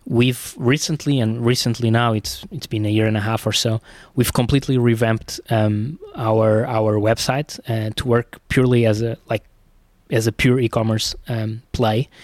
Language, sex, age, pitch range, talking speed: English, male, 20-39, 110-125 Hz, 170 wpm